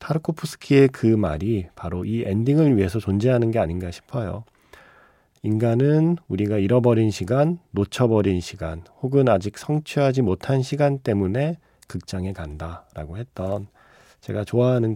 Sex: male